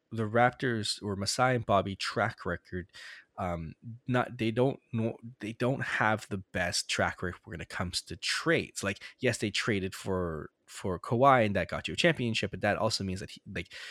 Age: 20-39